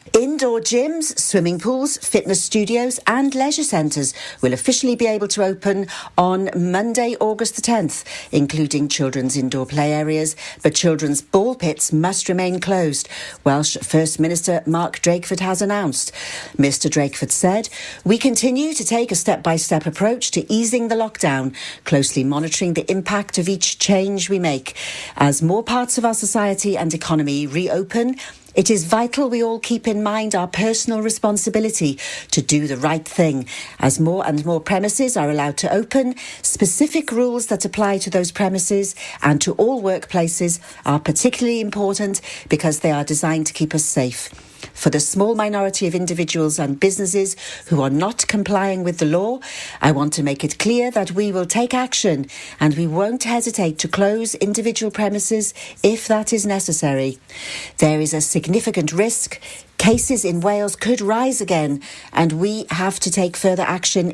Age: 50-69